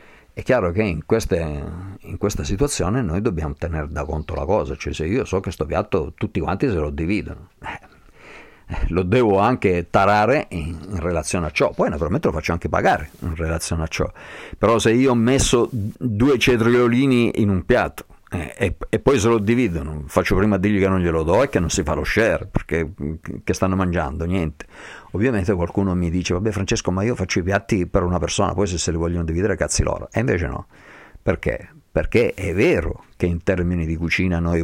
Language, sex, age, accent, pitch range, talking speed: Italian, male, 50-69, native, 80-100 Hz, 205 wpm